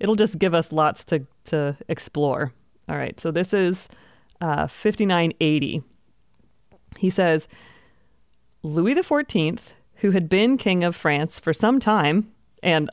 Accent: American